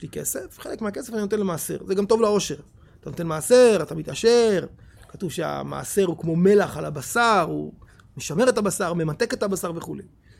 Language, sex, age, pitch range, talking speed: Hebrew, male, 30-49, 170-255 Hz, 175 wpm